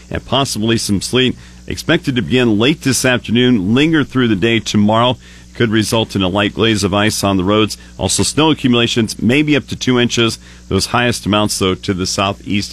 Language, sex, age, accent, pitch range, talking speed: English, male, 50-69, American, 95-120 Hz, 195 wpm